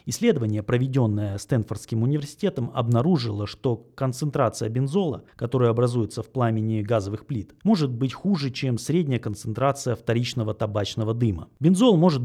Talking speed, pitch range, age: 120 wpm, 115-150 Hz, 30-49